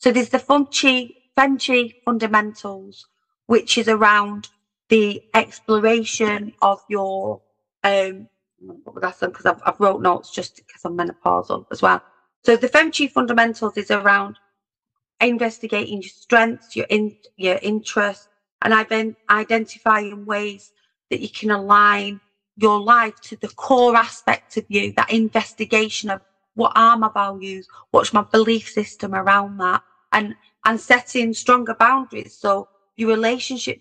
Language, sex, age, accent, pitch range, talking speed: English, female, 30-49, British, 200-230 Hz, 135 wpm